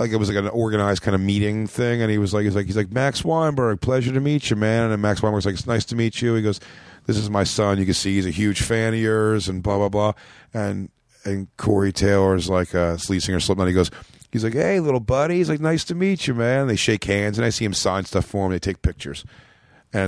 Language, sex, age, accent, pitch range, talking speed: English, male, 40-59, American, 95-115 Hz, 280 wpm